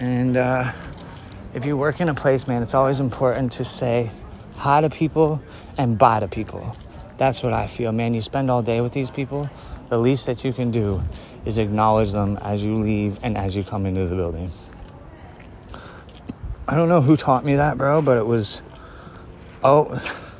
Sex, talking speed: male, 190 wpm